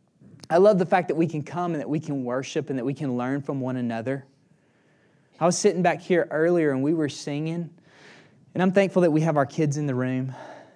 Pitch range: 130-170 Hz